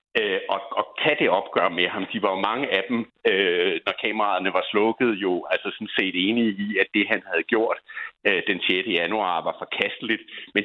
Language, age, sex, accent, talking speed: Danish, 60-79, male, native, 195 wpm